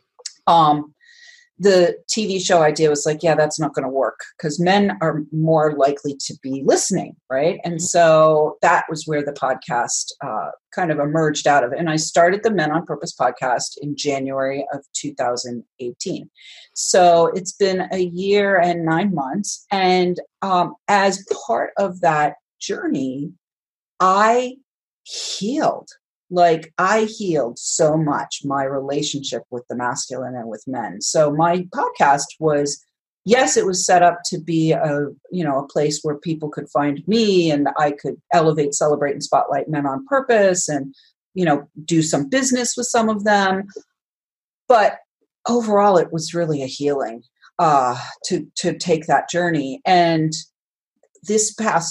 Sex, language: female, English